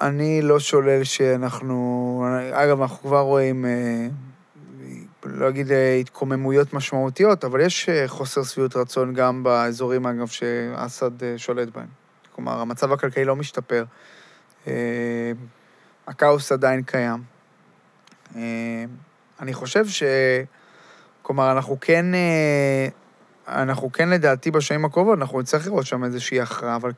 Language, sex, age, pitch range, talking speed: Hebrew, male, 20-39, 125-150 Hz, 110 wpm